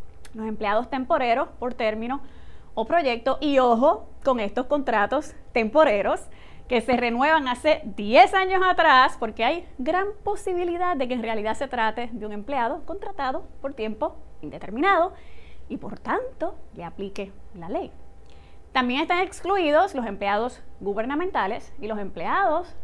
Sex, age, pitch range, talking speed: female, 20-39, 220-320 Hz, 140 wpm